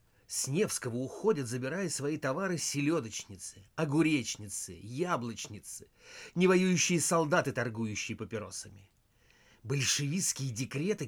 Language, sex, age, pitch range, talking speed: Russian, male, 50-69, 125-180 Hz, 80 wpm